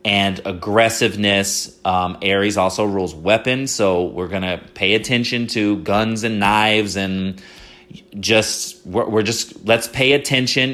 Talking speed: 135 wpm